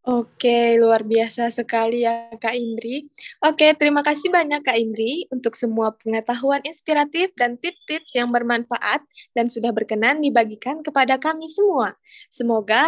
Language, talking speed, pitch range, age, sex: Indonesian, 150 wpm, 235-325 Hz, 20-39, female